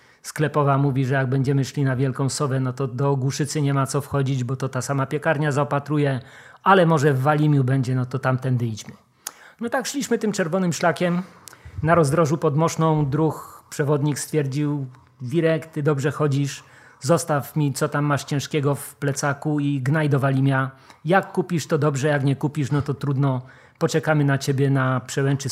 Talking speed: 175 wpm